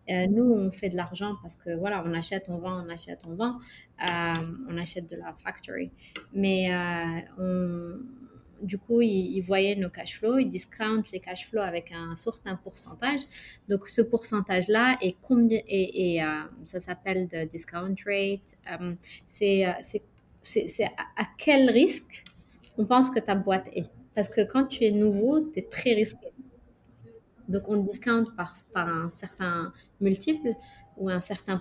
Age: 20-39